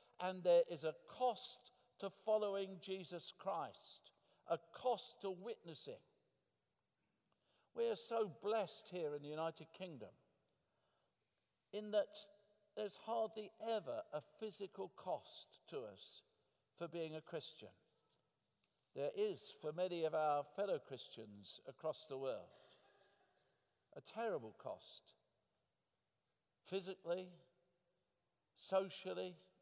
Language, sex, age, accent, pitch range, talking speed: English, male, 60-79, British, 170-215 Hz, 105 wpm